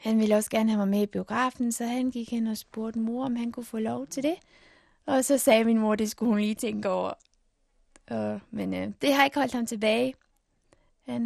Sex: female